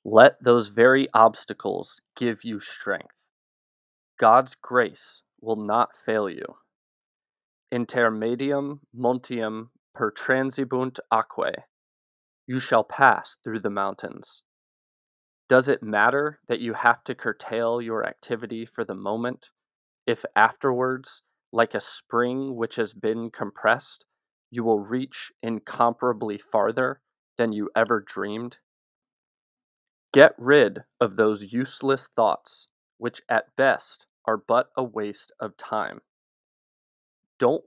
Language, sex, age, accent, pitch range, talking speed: English, male, 20-39, American, 110-130 Hz, 115 wpm